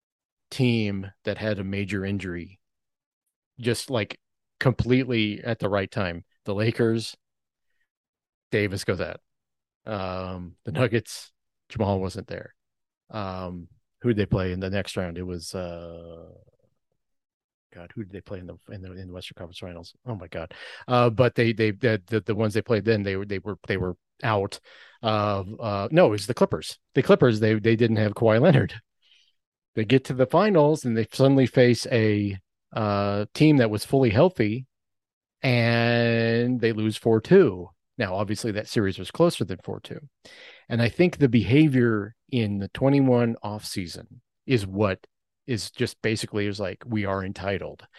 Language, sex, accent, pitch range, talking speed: English, male, American, 100-120 Hz, 165 wpm